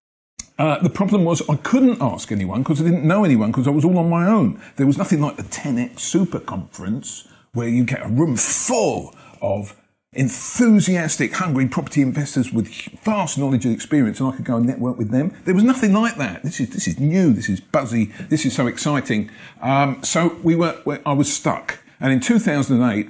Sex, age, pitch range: male, 50-69, 120-165 Hz